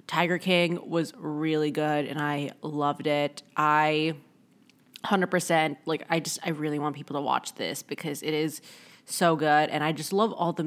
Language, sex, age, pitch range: English, female, 20-39, 155-200 Hz